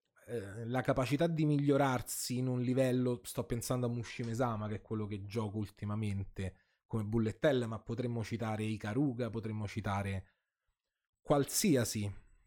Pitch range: 105-140 Hz